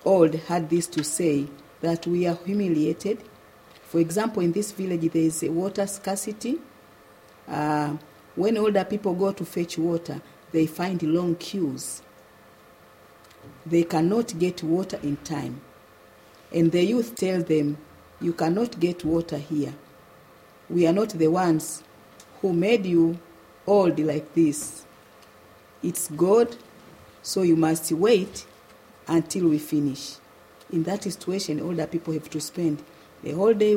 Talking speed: 140 wpm